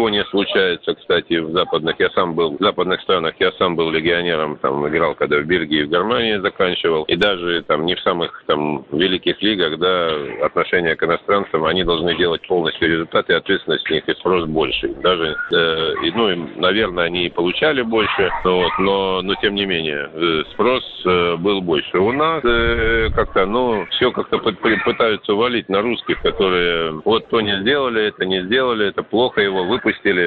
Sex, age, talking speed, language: male, 50-69, 180 wpm, Russian